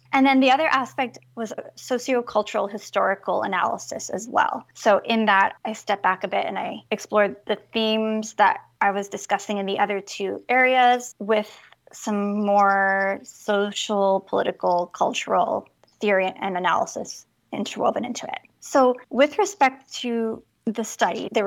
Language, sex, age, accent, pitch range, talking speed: English, female, 20-39, American, 200-250 Hz, 150 wpm